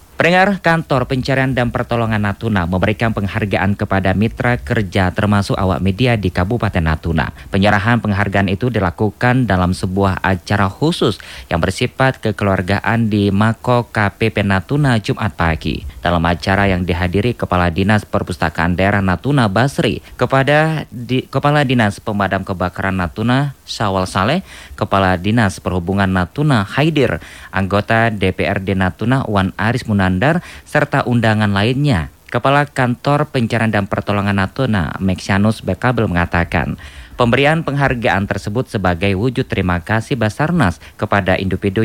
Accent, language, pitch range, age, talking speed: native, Indonesian, 95-125 Hz, 20-39, 125 wpm